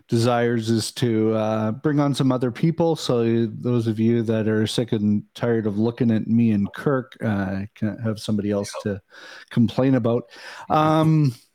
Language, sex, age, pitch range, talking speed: English, male, 40-59, 115-155 Hz, 170 wpm